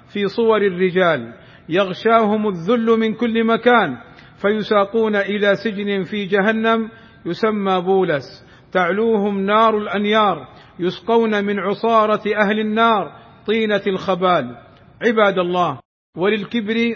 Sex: male